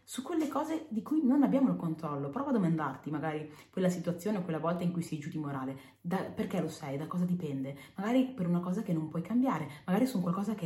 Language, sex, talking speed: Italian, female, 250 wpm